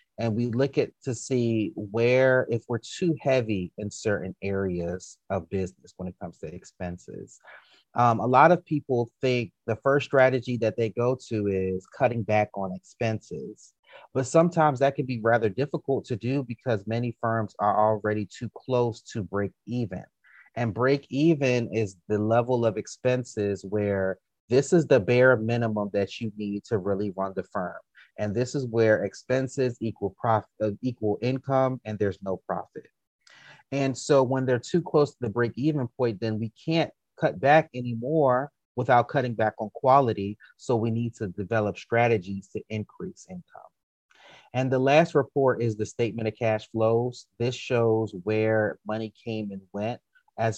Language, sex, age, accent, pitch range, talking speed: English, male, 30-49, American, 105-130 Hz, 170 wpm